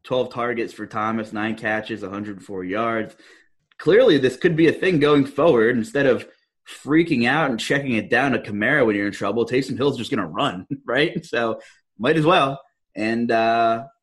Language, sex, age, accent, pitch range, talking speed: English, male, 20-39, American, 115-140 Hz, 185 wpm